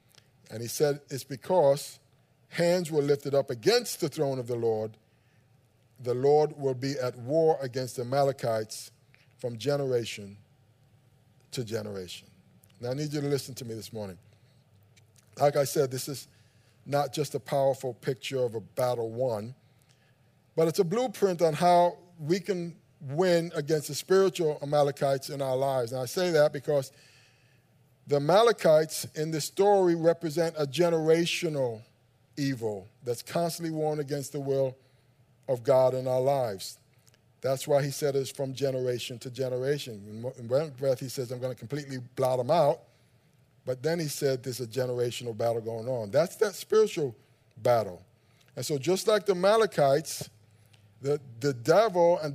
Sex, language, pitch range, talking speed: male, English, 125-150 Hz, 160 wpm